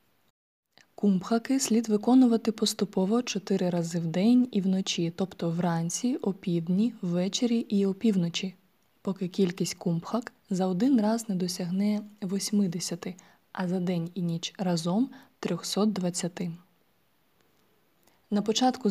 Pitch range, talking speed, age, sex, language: 180-220 Hz, 110 wpm, 20-39, female, Ukrainian